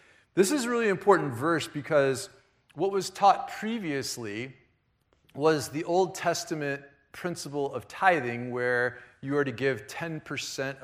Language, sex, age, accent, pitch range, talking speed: English, male, 40-59, American, 130-175 Hz, 135 wpm